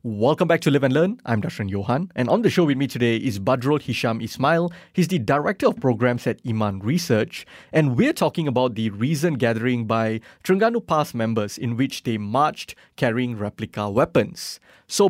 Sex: male